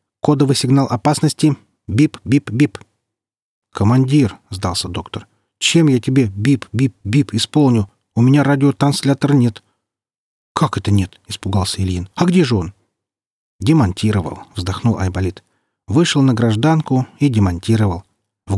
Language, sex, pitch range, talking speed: Russian, male, 105-140 Hz, 110 wpm